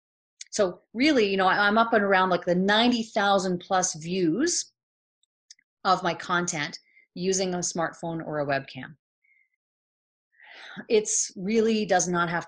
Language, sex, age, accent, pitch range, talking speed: English, female, 30-49, American, 165-205 Hz, 130 wpm